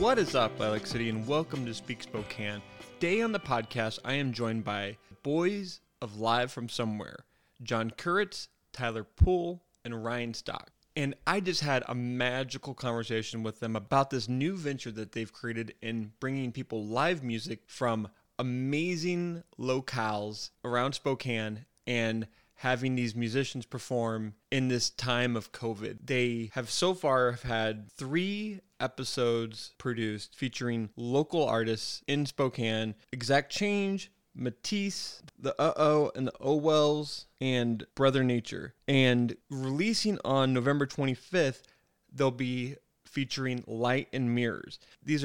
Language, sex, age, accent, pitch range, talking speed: English, male, 20-39, American, 115-145 Hz, 140 wpm